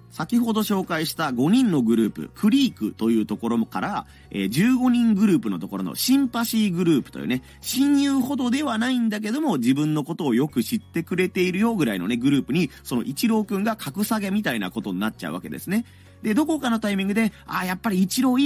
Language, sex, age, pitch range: Japanese, male, 30-49, 135-225 Hz